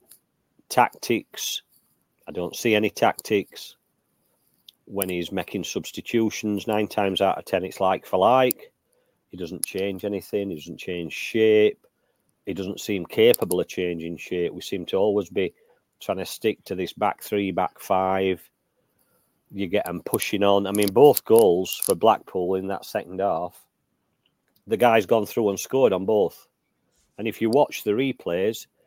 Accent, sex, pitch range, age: British, male, 100-125 Hz, 40-59